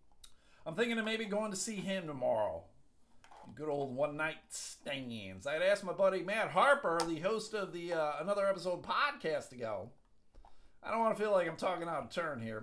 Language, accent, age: English, American, 40-59